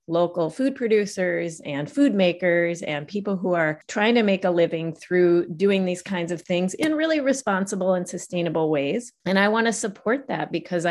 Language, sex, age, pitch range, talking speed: English, female, 30-49, 165-215 Hz, 185 wpm